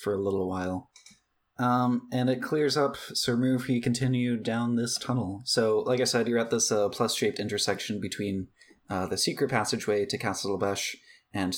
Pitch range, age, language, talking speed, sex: 95-120 Hz, 20-39, English, 180 wpm, male